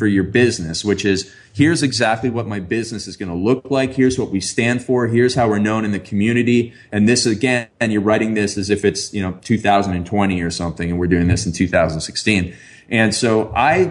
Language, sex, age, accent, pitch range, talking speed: English, male, 30-49, American, 105-130 Hz, 220 wpm